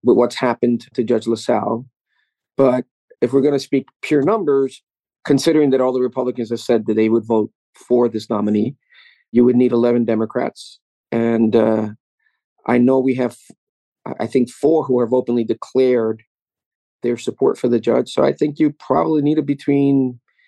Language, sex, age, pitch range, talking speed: English, male, 40-59, 115-140 Hz, 175 wpm